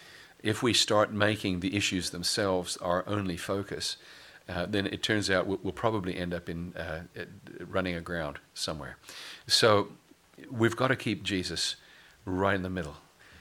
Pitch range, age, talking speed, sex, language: 90-105 Hz, 50-69, 150 wpm, male, English